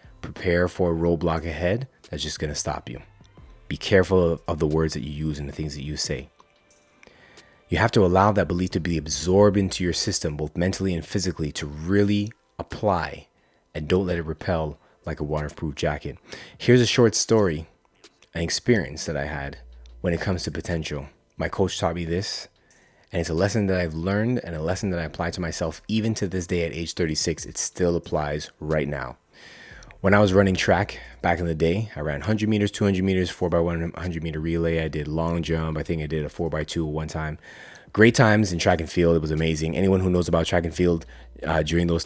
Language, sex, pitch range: English, male, 80-90 Hz